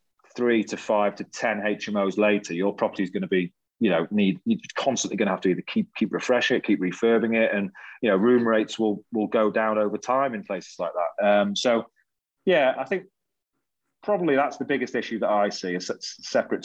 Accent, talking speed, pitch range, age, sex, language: British, 215 wpm, 95-120 Hz, 30-49, male, English